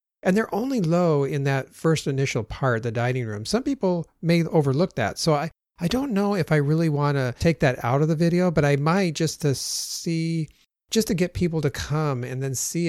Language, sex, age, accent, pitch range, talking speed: English, male, 40-59, American, 120-160 Hz, 225 wpm